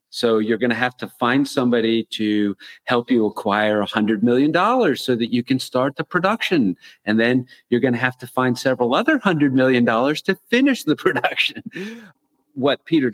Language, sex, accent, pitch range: English, male, American, 105-130 Hz